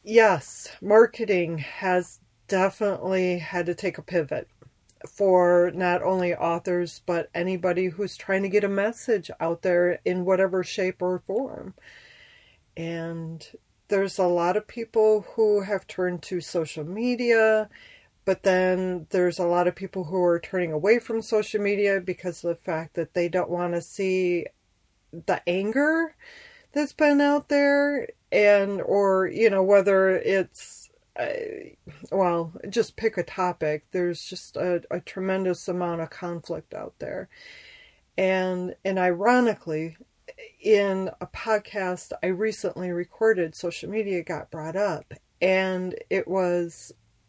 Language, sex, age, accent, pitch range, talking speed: English, female, 40-59, American, 175-215 Hz, 140 wpm